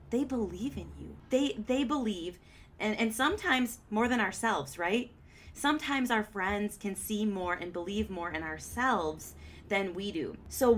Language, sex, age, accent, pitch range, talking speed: English, female, 20-39, American, 180-225 Hz, 160 wpm